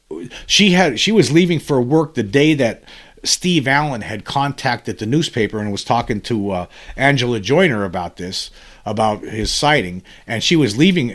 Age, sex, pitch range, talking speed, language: 50-69, male, 105-140 Hz, 170 wpm, English